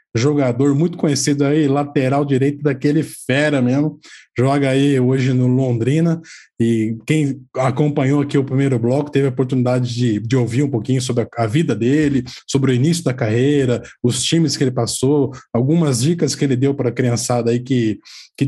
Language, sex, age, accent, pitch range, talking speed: Portuguese, male, 20-39, Brazilian, 125-145 Hz, 180 wpm